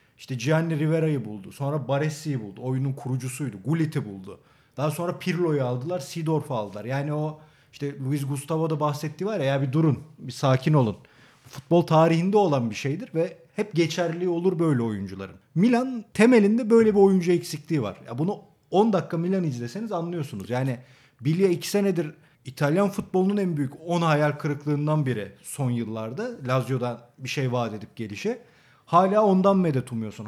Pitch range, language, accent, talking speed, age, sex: 135-180 Hz, Turkish, native, 160 wpm, 40-59, male